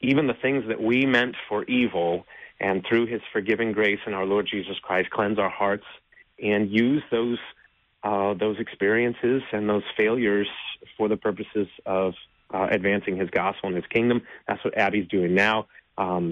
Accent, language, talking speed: American, English, 175 wpm